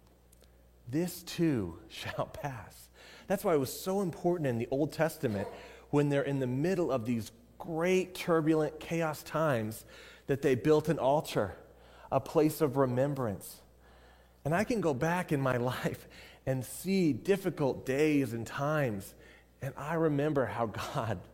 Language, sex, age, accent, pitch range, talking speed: English, male, 30-49, American, 100-155 Hz, 150 wpm